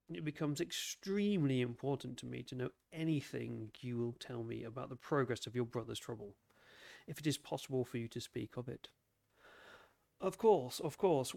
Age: 40-59